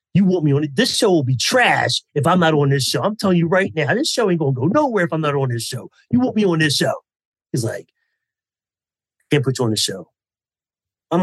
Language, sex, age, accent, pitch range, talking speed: English, male, 30-49, American, 135-185 Hz, 265 wpm